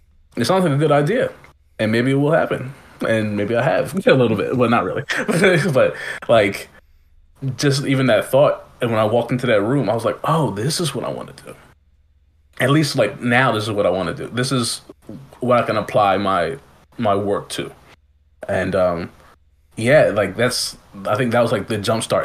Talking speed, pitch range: 210 wpm, 90-125 Hz